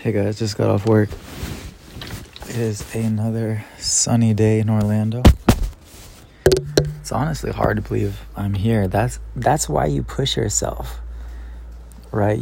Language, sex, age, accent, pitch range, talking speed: English, male, 20-39, American, 95-115 Hz, 130 wpm